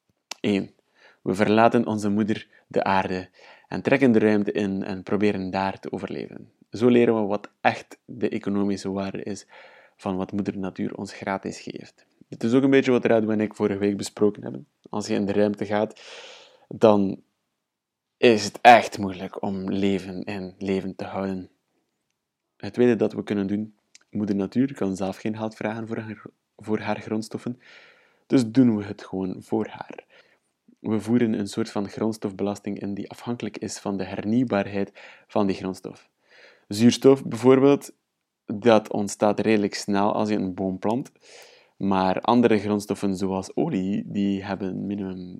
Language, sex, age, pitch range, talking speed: English, male, 20-39, 100-115 Hz, 165 wpm